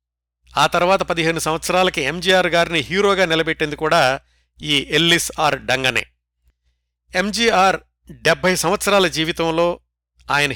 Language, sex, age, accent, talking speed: Telugu, male, 50-69, native, 100 wpm